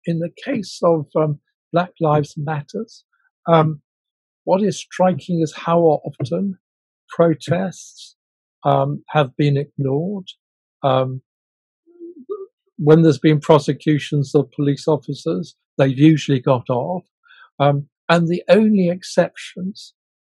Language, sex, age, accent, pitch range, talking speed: English, male, 50-69, British, 140-170 Hz, 110 wpm